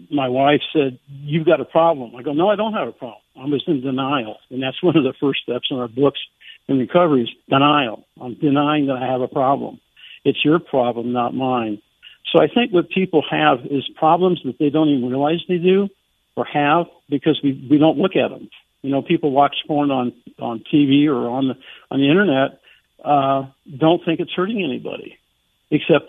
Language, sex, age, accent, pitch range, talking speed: English, male, 60-79, American, 135-165 Hz, 205 wpm